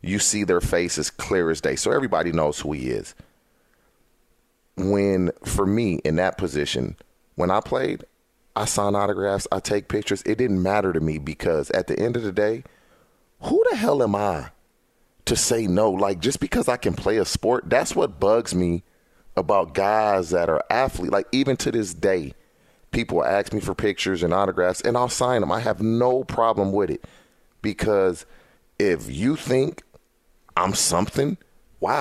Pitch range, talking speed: 85-110 Hz, 175 wpm